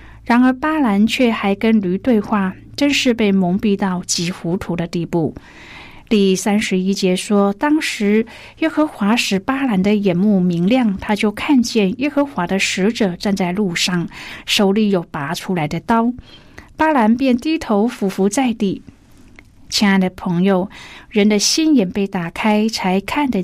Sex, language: female, Chinese